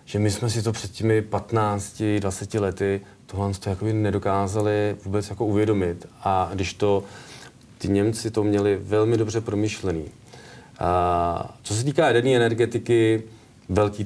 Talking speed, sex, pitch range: 145 wpm, male, 95-110 Hz